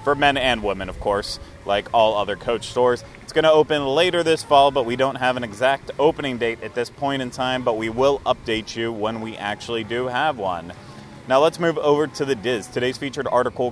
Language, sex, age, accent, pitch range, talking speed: English, male, 30-49, American, 115-140 Hz, 225 wpm